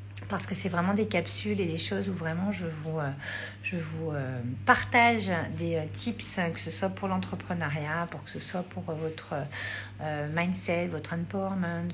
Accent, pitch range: French, 155-215 Hz